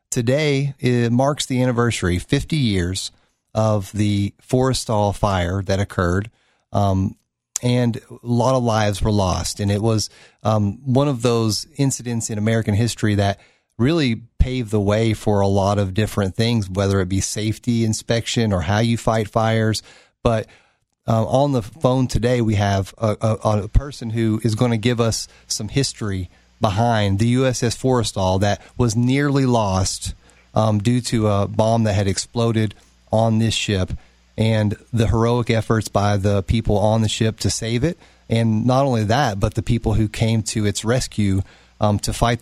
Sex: male